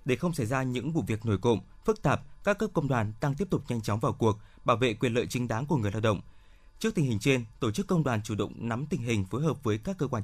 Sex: male